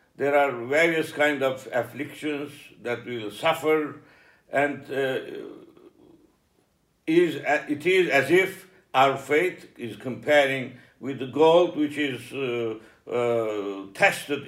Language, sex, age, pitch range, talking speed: English, male, 60-79, 130-165 Hz, 125 wpm